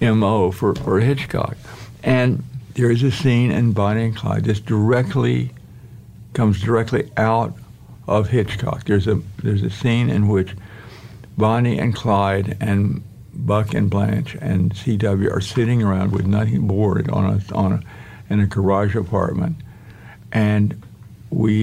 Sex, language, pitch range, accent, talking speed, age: male, English, 105-125 Hz, American, 145 wpm, 60-79